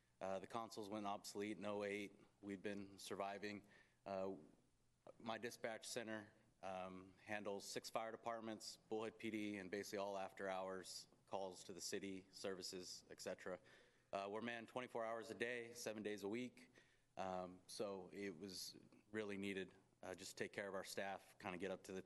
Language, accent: English, American